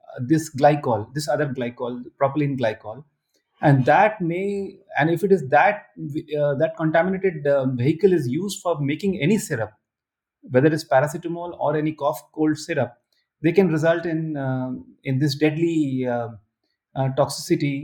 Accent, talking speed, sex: Indian, 150 wpm, male